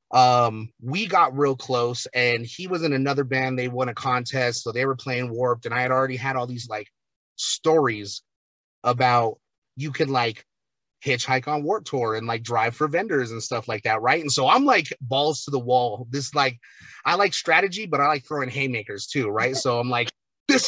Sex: male